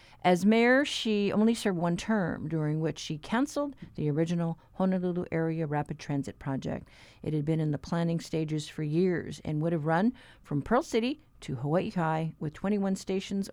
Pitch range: 150-185 Hz